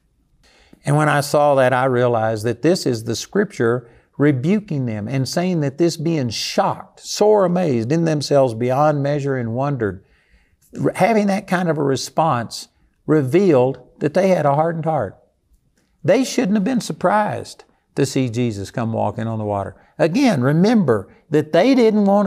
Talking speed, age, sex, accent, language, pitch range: 160 wpm, 50-69, male, American, English, 120-160 Hz